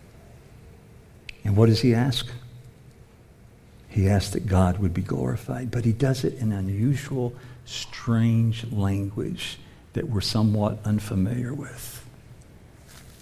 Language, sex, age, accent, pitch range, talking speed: English, male, 50-69, American, 110-145 Hz, 115 wpm